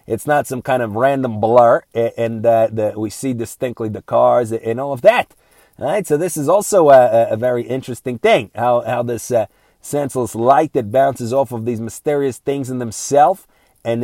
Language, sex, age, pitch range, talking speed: English, male, 30-49, 125-145 Hz, 185 wpm